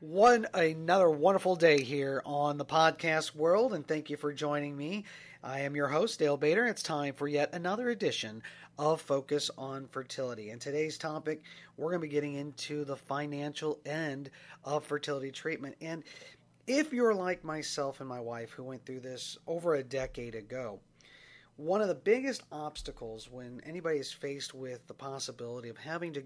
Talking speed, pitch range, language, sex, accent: 180 wpm, 125-155 Hz, English, male, American